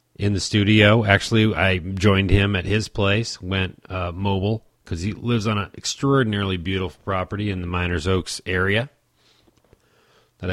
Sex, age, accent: male, 30-49, American